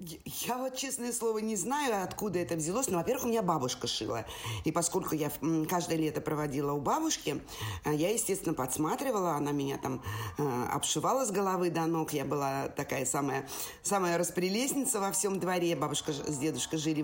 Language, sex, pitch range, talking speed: Russian, female, 155-200 Hz, 170 wpm